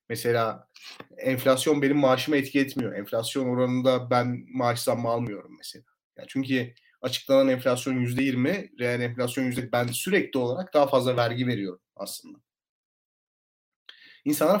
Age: 40-59